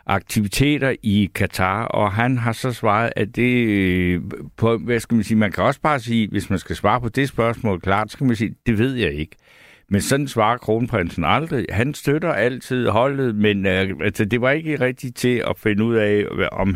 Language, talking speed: Danish, 210 wpm